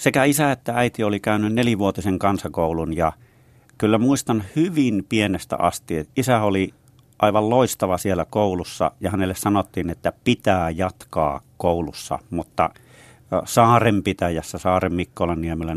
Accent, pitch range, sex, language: native, 90-125 Hz, male, Finnish